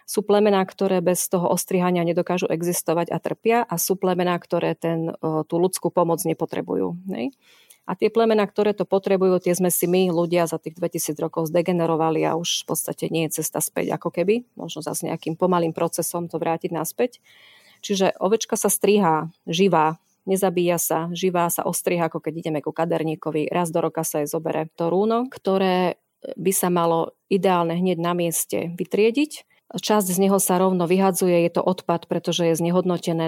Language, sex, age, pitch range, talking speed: Slovak, female, 30-49, 165-190 Hz, 180 wpm